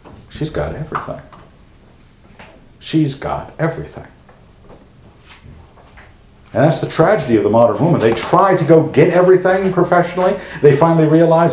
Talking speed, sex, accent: 125 wpm, male, American